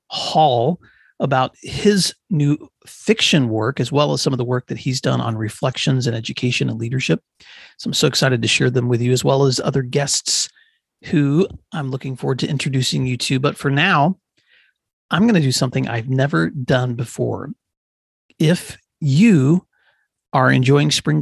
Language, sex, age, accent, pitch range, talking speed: English, male, 40-59, American, 130-165 Hz, 175 wpm